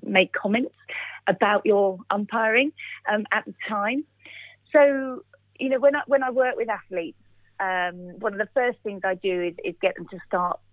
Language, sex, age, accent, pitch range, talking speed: English, female, 40-59, British, 180-230 Hz, 185 wpm